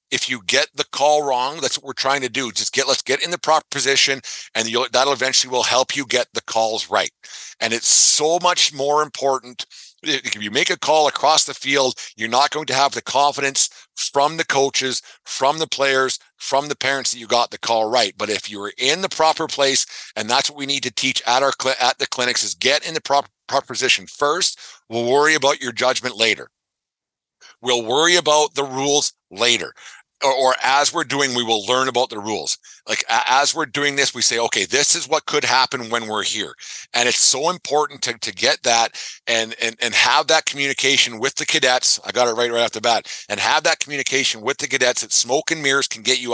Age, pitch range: 50-69, 120-145 Hz